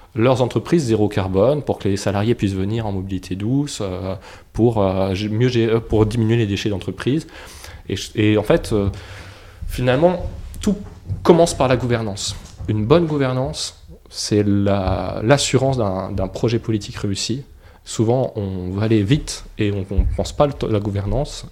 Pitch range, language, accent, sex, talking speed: 100-125 Hz, French, French, male, 160 wpm